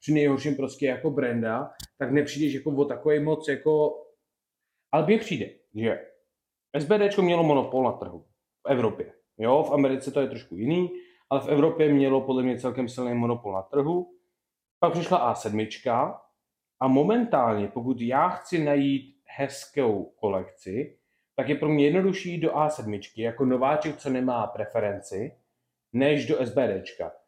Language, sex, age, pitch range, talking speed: Czech, male, 30-49, 125-155 Hz, 155 wpm